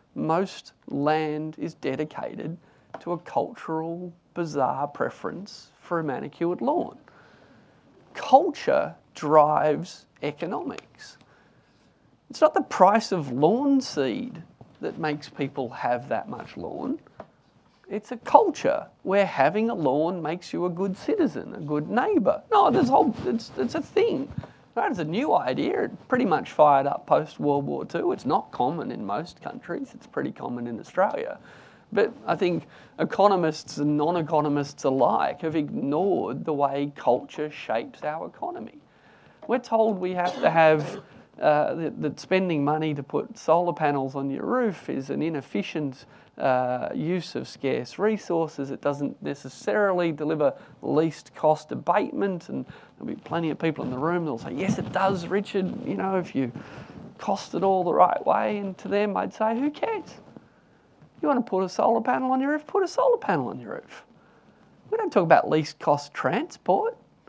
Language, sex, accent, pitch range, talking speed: English, male, Australian, 150-205 Hz, 160 wpm